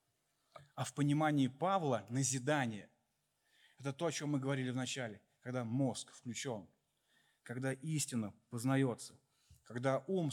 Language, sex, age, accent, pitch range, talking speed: Russian, male, 20-39, native, 135-185 Hz, 115 wpm